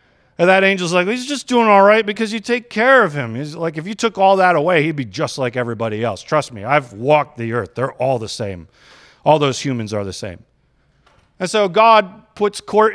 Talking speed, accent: 230 wpm, American